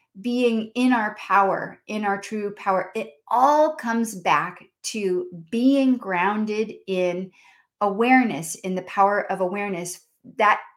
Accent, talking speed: American, 130 wpm